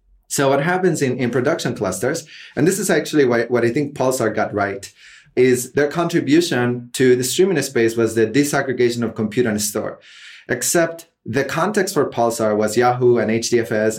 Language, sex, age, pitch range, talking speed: English, male, 20-39, 110-140 Hz, 175 wpm